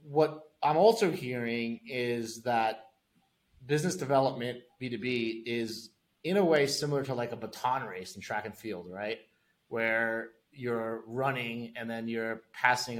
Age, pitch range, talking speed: 30-49, 115-140 Hz, 145 wpm